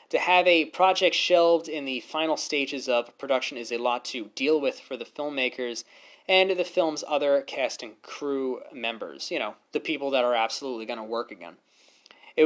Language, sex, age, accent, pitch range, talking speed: English, male, 20-39, American, 120-175 Hz, 195 wpm